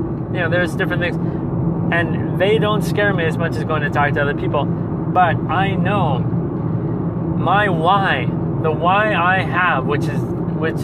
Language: English